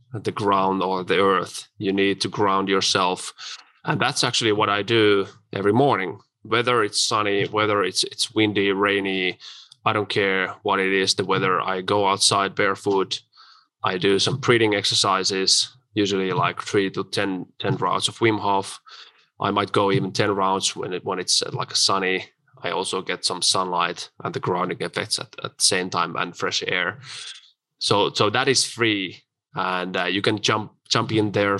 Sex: male